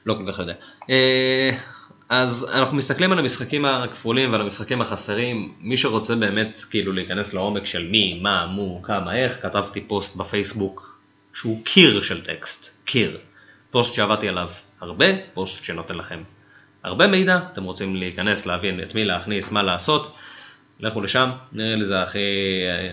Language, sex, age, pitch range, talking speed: Hebrew, male, 20-39, 95-110 Hz, 150 wpm